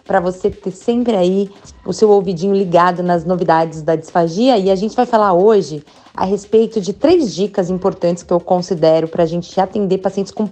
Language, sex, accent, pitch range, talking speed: Portuguese, female, Brazilian, 170-210 Hz, 195 wpm